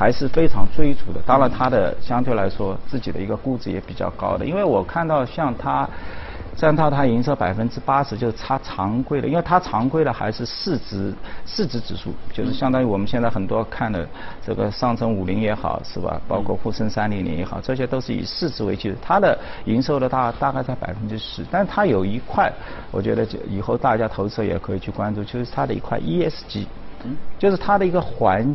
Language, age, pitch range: Chinese, 50-69, 100-140 Hz